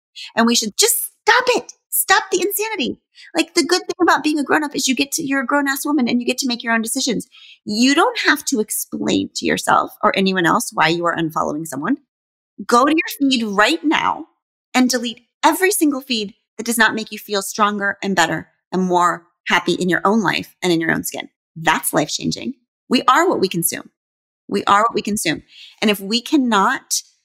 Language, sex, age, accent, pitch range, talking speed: English, female, 30-49, American, 195-280 Hz, 220 wpm